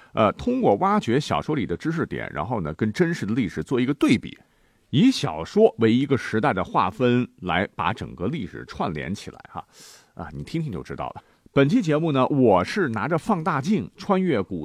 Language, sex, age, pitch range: Chinese, male, 50-69, 115-190 Hz